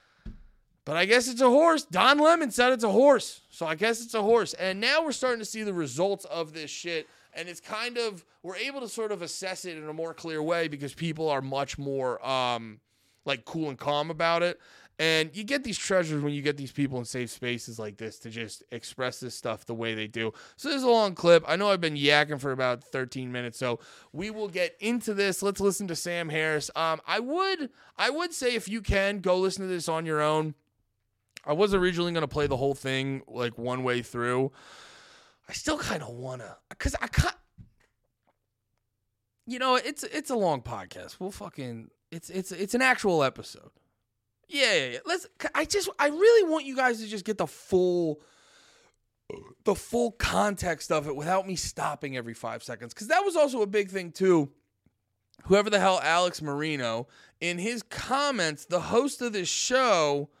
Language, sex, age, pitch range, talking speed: English, male, 20-39, 130-215 Hz, 205 wpm